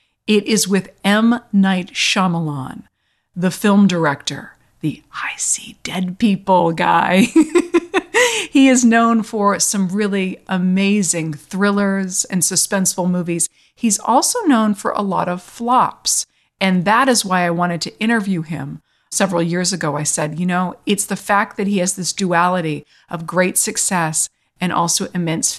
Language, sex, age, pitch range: English, female, 40-59, 175-220 Hz